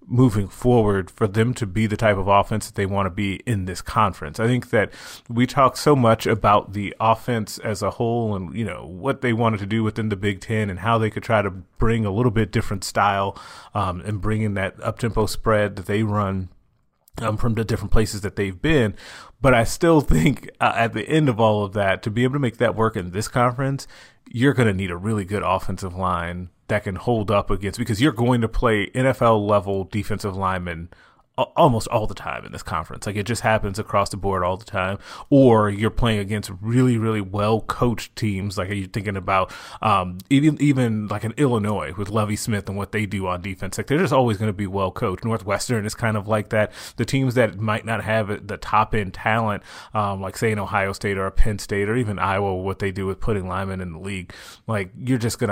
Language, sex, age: English, male, 30-49